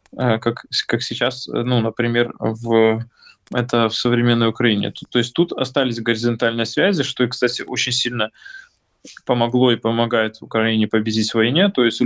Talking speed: 150 wpm